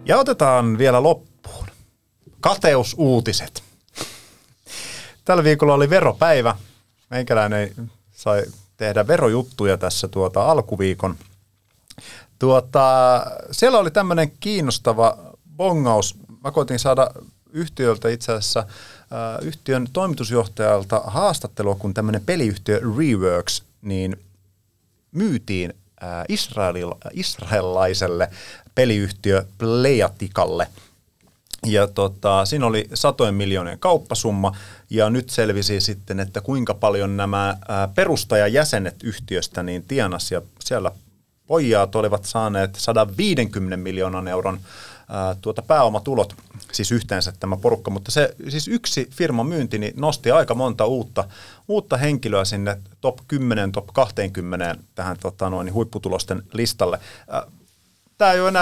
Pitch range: 100-130 Hz